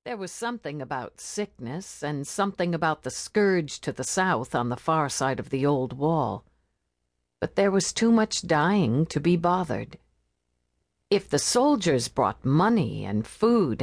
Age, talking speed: 50-69, 160 wpm